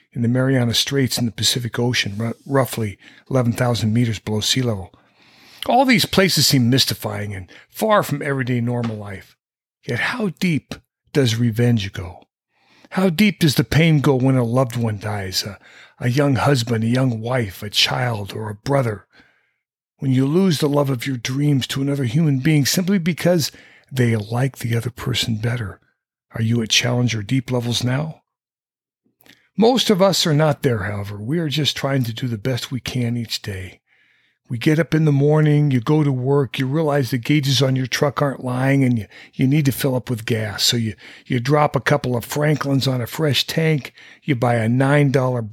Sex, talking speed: male, 190 wpm